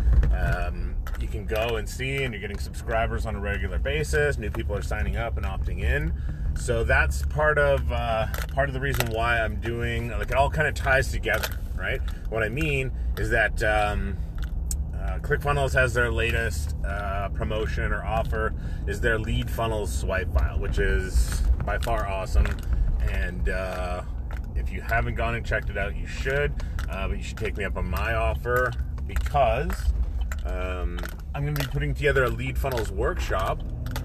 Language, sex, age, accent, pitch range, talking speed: English, male, 30-49, American, 70-110 Hz, 180 wpm